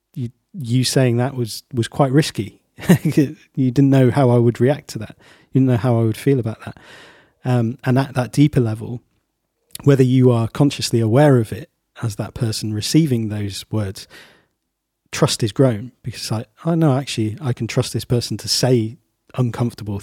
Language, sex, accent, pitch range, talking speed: English, male, British, 110-130 Hz, 180 wpm